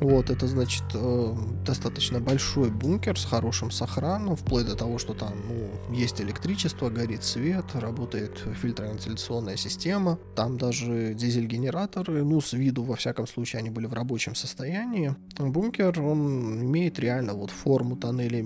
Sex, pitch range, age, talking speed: male, 110-140 Hz, 20-39, 145 wpm